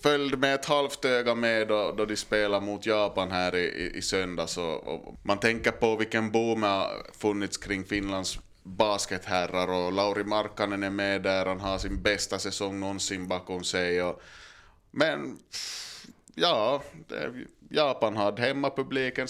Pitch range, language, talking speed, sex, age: 95-120 Hz, Swedish, 150 wpm, male, 20-39